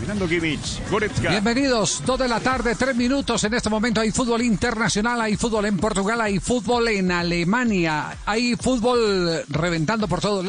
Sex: male